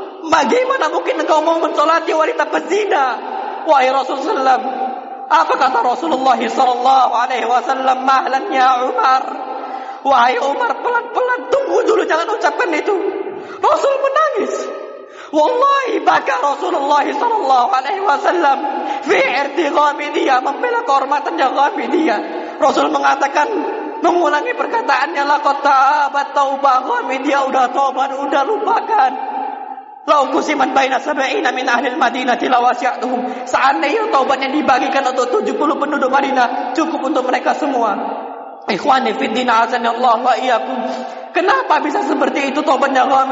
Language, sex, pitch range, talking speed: Indonesian, male, 265-395 Hz, 115 wpm